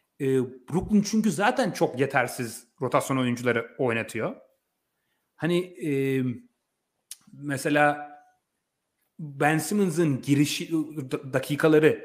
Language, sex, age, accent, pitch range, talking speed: Turkish, male, 30-49, native, 130-180 Hz, 80 wpm